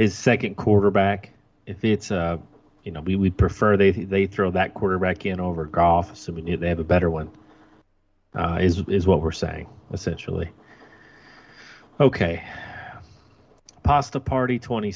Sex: male